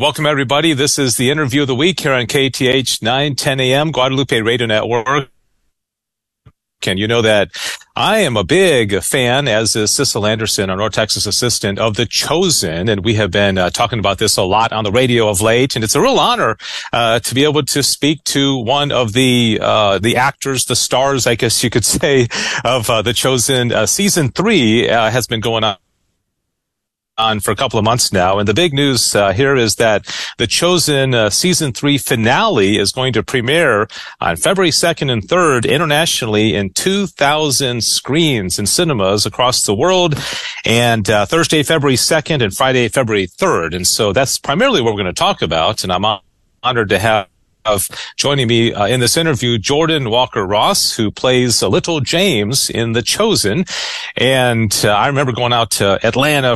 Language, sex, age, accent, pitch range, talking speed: English, male, 40-59, American, 110-140 Hz, 190 wpm